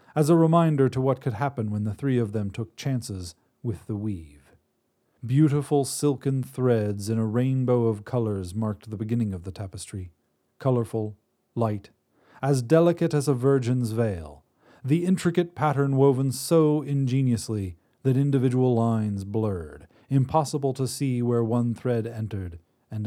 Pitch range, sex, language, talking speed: 105-130 Hz, male, English, 150 wpm